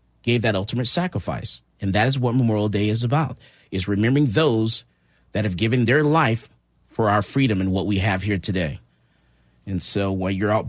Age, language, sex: 40-59, English, male